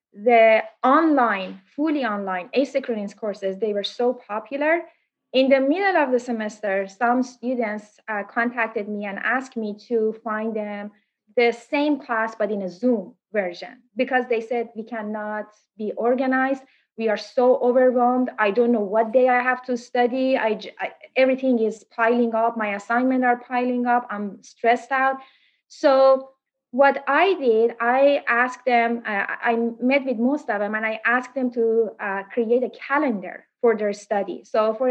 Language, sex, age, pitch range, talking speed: English, female, 30-49, 215-255 Hz, 165 wpm